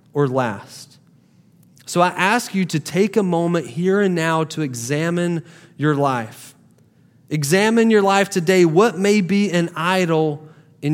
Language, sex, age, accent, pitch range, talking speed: English, male, 30-49, American, 145-185 Hz, 150 wpm